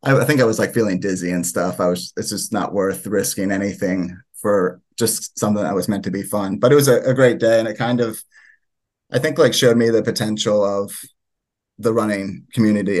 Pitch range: 100-115 Hz